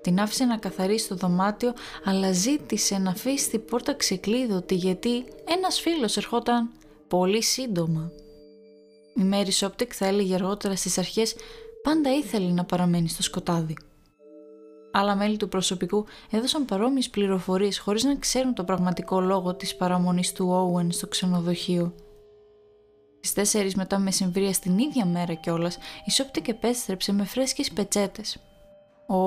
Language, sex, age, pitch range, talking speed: Greek, female, 20-39, 180-245 Hz, 135 wpm